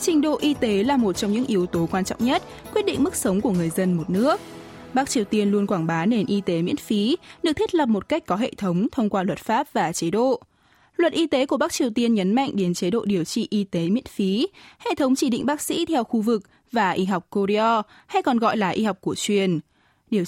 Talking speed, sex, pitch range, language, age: 260 wpm, female, 195-270 Hz, Vietnamese, 10-29